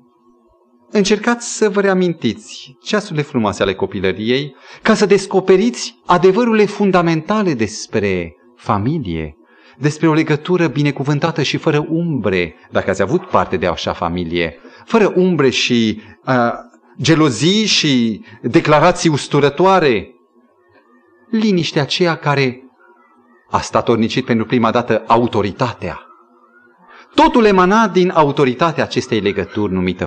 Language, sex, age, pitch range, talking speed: Romanian, male, 40-59, 105-170 Hz, 110 wpm